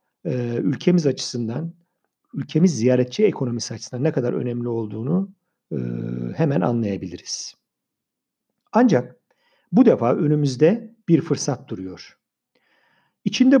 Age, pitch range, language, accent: 50-69, 115-185 Hz, Turkish, native